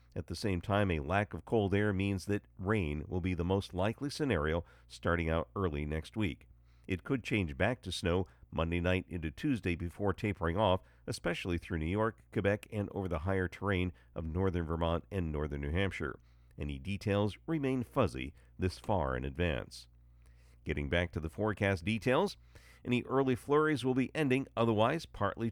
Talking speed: 175 wpm